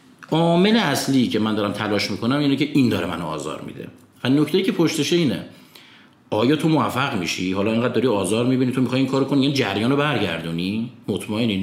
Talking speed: 200 wpm